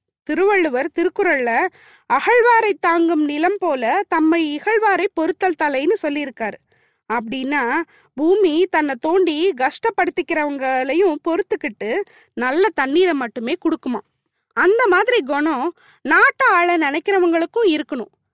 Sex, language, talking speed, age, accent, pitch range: female, Tamil, 90 wpm, 20-39, native, 275-385 Hz